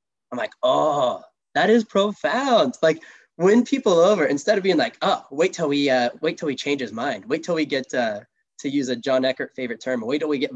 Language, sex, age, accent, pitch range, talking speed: English, male, 10-29, American, 125-155 Hz, 235 wpm